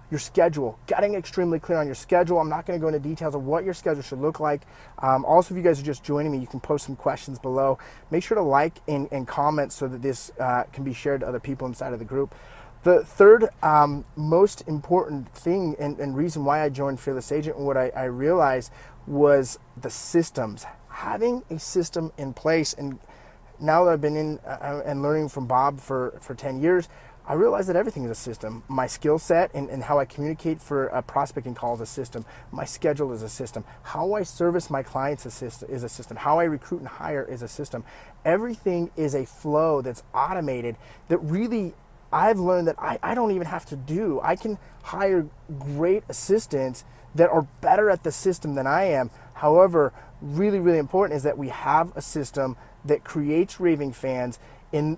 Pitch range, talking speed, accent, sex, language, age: 130-165 Hz, 205 wpm, American, male, English, 30-49